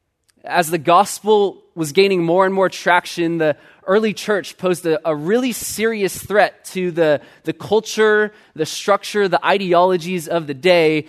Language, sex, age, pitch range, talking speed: English, male, 20-39, 155-195 Hz, 155 wpm